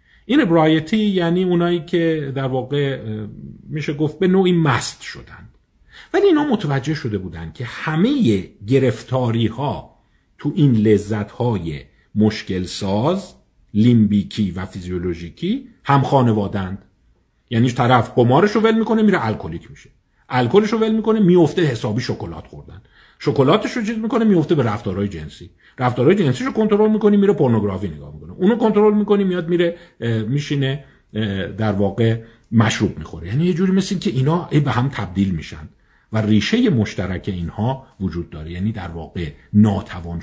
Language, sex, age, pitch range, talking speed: Persian, male, 50-69, 100-170 Hz, 135 wpm